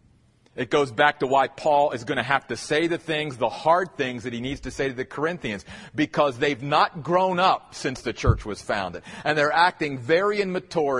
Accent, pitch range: American, 130-185 Hz